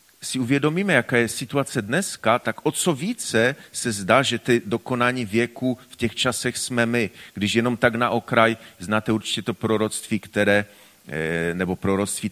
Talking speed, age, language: 160 wpm, 40-59, Czech